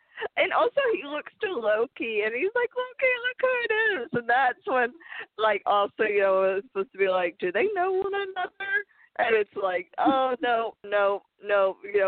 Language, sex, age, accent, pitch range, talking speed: English, female, 20-39, American, 190-305 Hz, 195 wpm